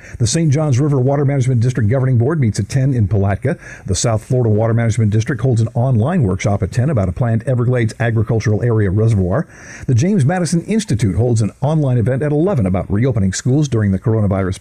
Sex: male